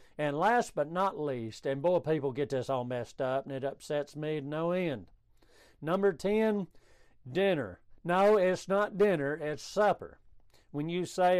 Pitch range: 135-180 Hz